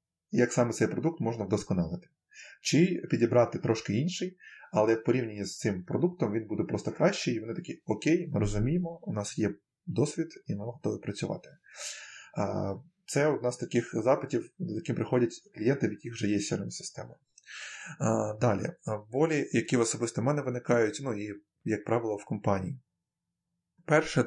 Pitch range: 105-140 Hz